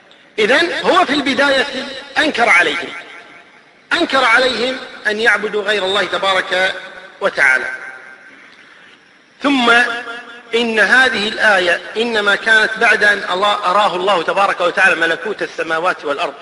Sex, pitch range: male, 200-260 Hz